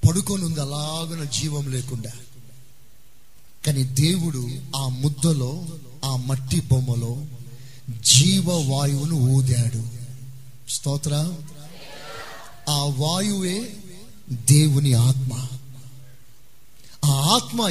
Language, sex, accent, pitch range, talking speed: Telugu, male, native, 135-185 Hz, 70 wpm